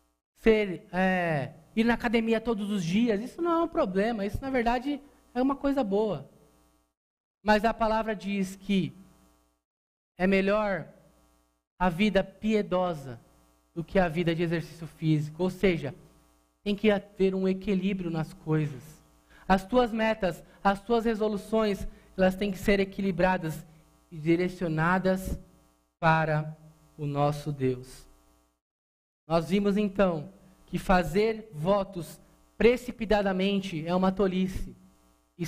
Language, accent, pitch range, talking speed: Portuguese, Brazilian, 155-220 Hz, 120 wpm